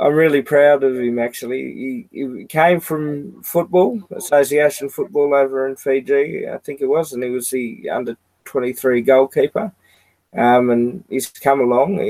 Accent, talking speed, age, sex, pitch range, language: Australian, 155 wpm, 20-39, male, 120-140 Hz, English